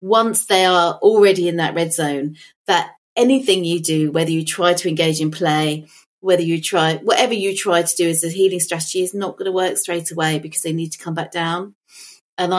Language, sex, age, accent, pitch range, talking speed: English, female, 30-49, British, 155-185 Hz, 220 wpm